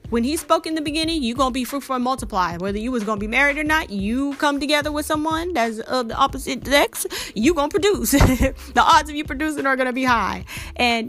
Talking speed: 255 wpm